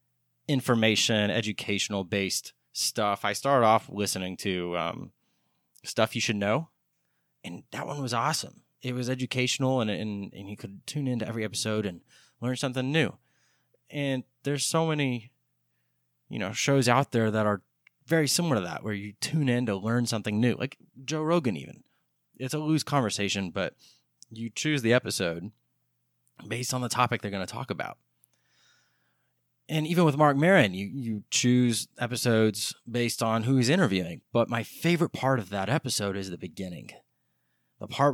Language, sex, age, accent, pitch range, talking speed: English, male, 20-39, American, 95-130 Hz, 165 wpm